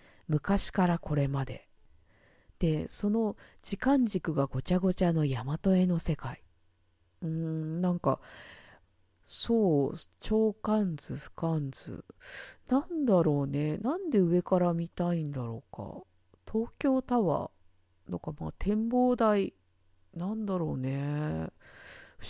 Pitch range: 140-215 Hz